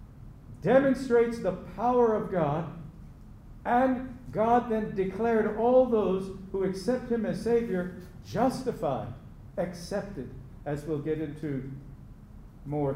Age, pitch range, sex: 50-69, 145-205 Hz, male